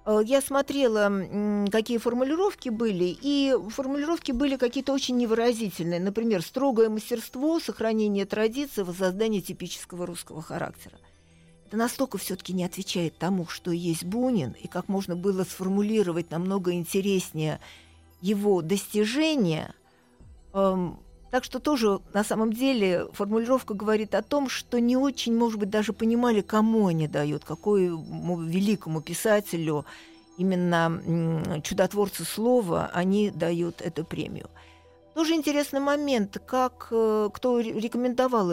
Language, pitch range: Russian, 175-235 Hz